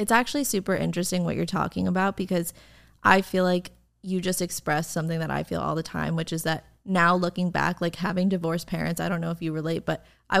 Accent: American